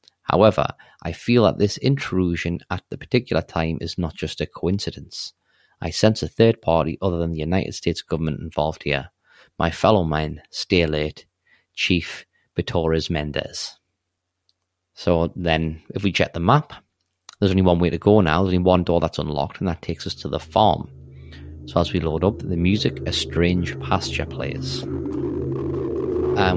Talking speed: 170 wpm